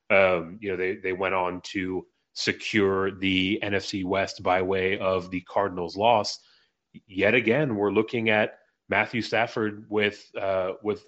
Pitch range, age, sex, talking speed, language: 95-110 Hz, 30-49, male, 150 wpm, English